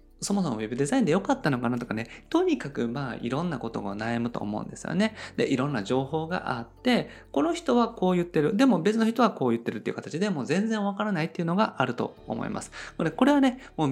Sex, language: male, Japanese